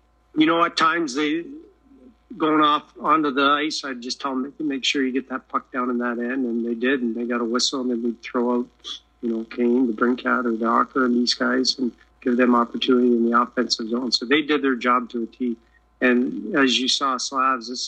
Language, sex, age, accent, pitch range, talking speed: English, male, 50-69, American, 120-145 Hz, 240 wpm